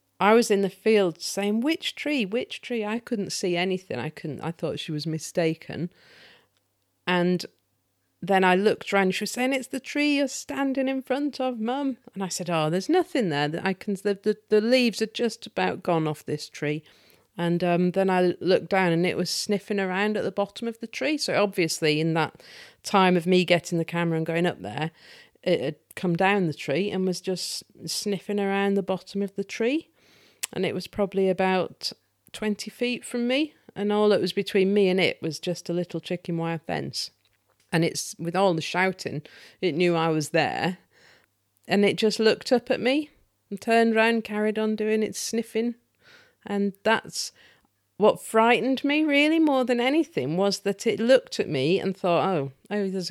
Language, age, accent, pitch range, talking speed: English, 40-59, British, 170-225 Hz, 200 wpm